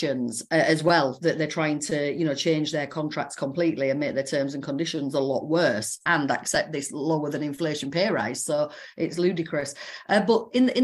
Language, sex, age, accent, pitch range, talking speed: English, female, 40-59, British, 150-180 Hz, 200 wpm